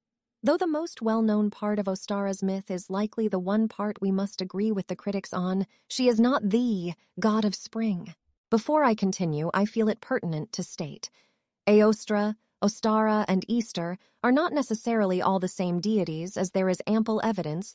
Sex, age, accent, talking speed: female, 30-49, American, 175 wpm